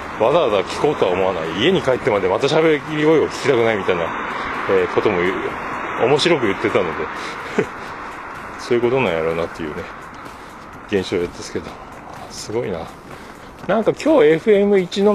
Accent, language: native, Japanese